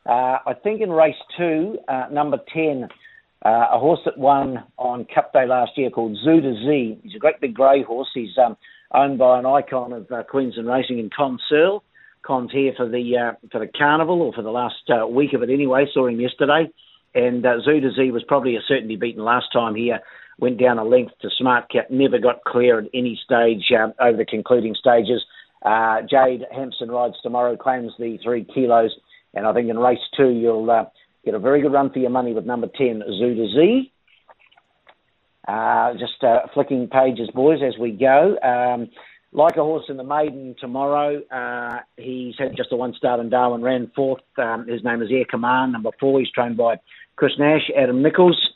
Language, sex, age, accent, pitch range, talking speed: English, male, 50-69, Australian, 120-140 Hz, 200 wpm